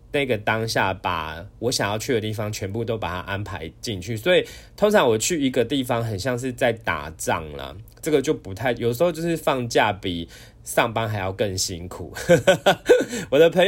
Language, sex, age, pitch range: Chinese, male, 20-39, 100-145 Hz